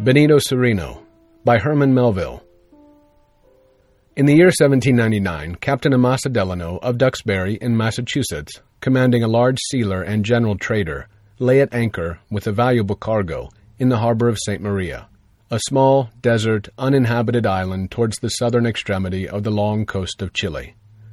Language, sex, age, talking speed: English, male, 40-59, 145 wpm